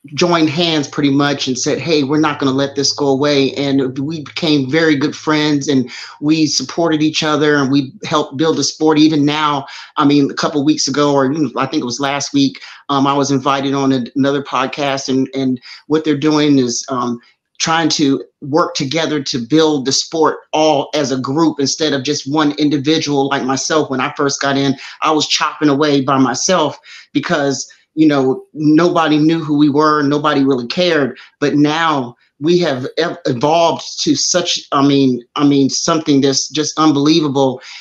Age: 30-49